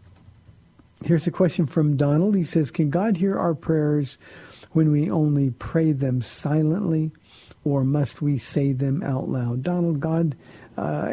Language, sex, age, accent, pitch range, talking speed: English, male, 50-69, American, 130-155 Hz, 150 wpm